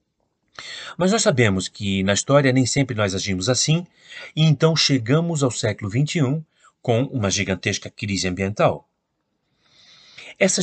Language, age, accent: Portuguese, 40-59, Brazilian